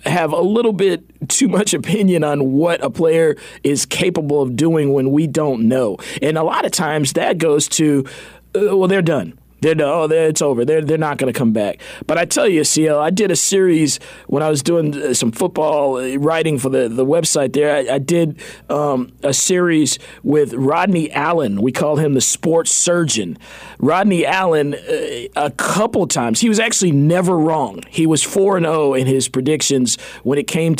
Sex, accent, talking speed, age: male, American, 190 wpm, 40-59